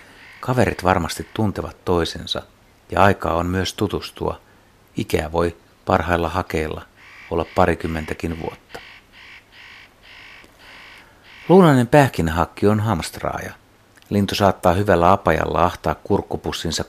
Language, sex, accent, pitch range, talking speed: Finnish, male, native, 85-100 Hz, 90 wpm